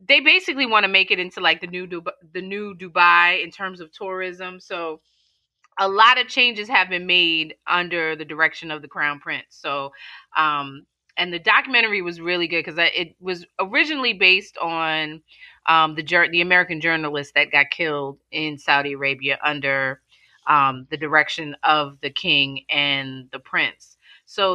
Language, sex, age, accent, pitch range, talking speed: English, female, 30-49, American, 155-190 Hz, 170 wpm